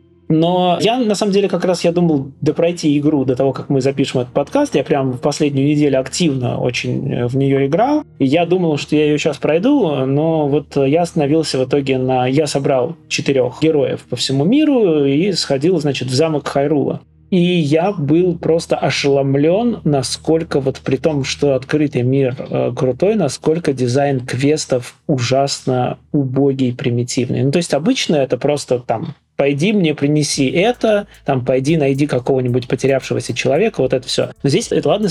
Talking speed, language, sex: 170 wpm, Russian, male